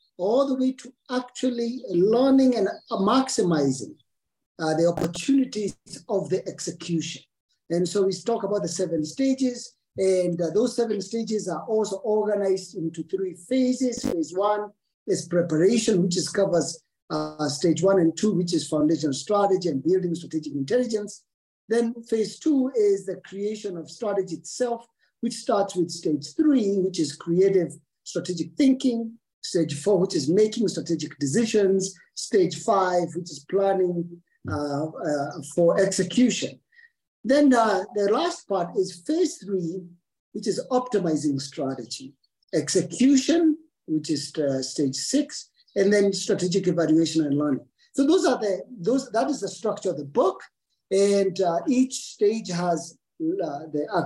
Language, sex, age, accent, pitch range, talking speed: English, male, 50-69, South African, 170-235 Hz, 145 wpm